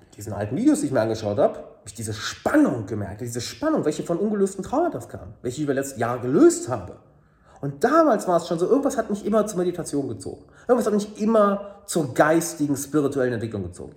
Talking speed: 215 wpm